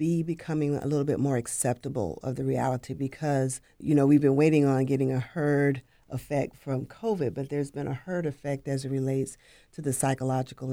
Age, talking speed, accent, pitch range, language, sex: 40-59, 190 wpm, American, 130-150 Hz, English, female